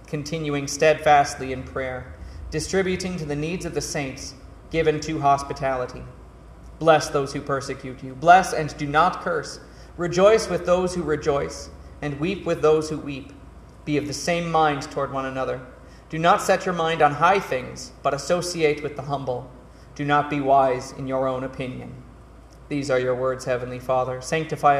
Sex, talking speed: male, 170 wpm